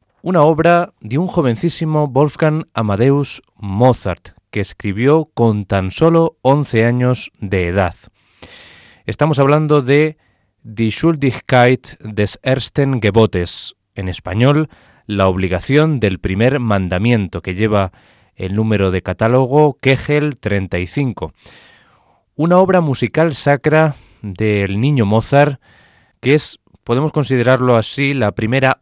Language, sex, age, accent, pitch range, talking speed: Spanish, male, 20-39, Spanish, 105-140 Hz, 110 wpm